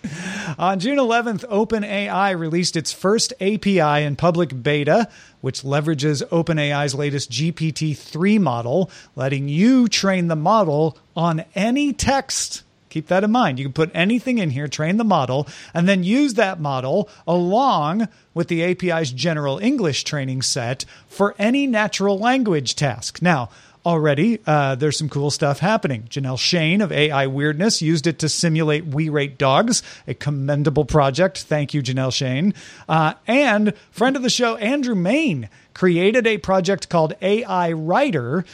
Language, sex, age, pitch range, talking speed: English, male, 40-59, 150-200 Hz, 150 wpm